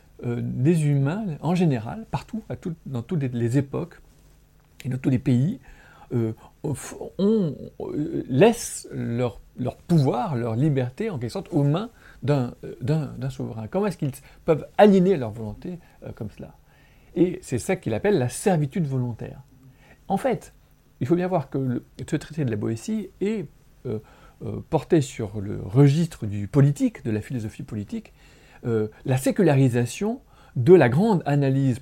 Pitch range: 120-170 Hz